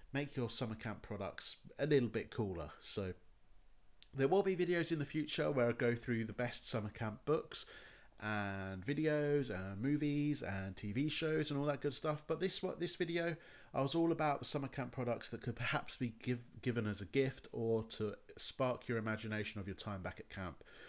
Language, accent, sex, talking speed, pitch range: English, British, male, 200 wpm, 105-140 Hz